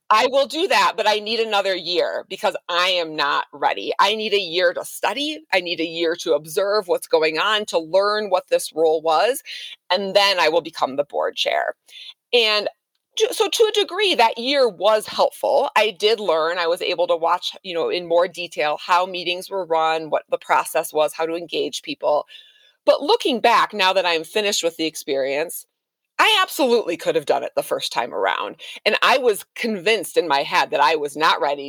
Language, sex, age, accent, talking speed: English, female, 30-49, American, 210 wpm